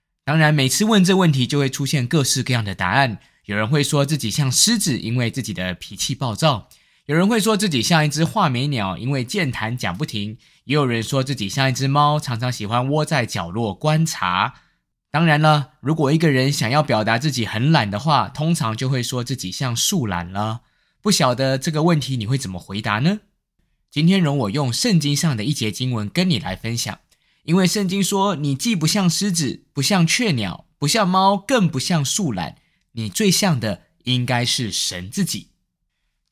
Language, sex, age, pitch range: Chinese, male, 20-39, 115-165 Hz